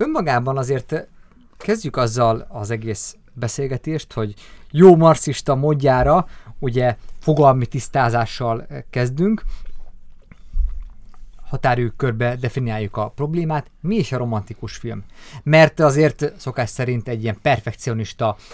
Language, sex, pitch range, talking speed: Hungarian, male, 115-145 Hz, 105 wpm